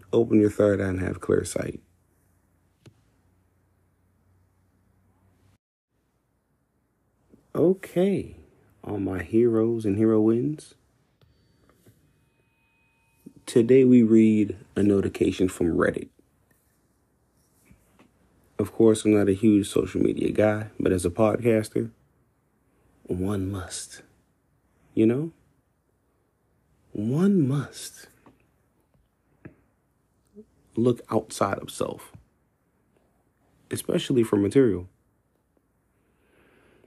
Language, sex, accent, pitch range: English, male, American, 90-115 Hz